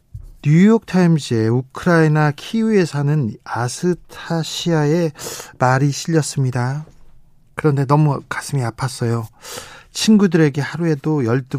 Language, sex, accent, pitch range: Korean, male, native, 120-145 Hz